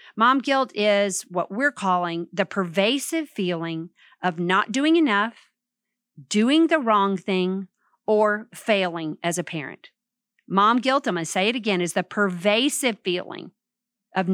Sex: female